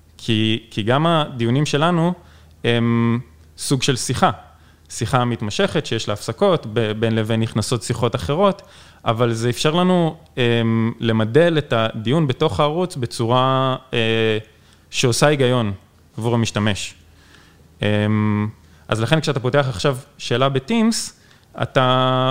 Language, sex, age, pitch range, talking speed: Hebrew, male, 20-39, 105-135 Hz, 110 wpm